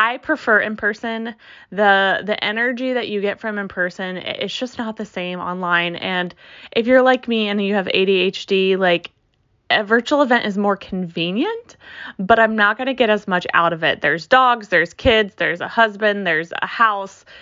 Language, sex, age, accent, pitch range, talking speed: English, female, 20-39, American, 180-220 Hz, 195 wpm